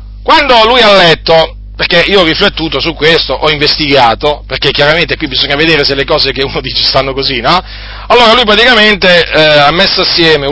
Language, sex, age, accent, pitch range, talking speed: Italian, male, 40-59, native, 120-165 Hz, 190 wpm